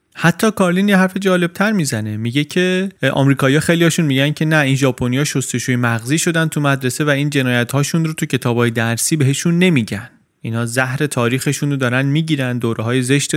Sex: male